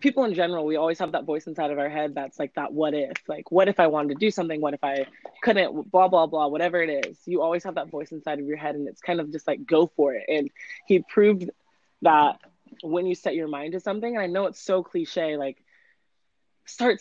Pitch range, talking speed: 145-180 Hz, 255 wpm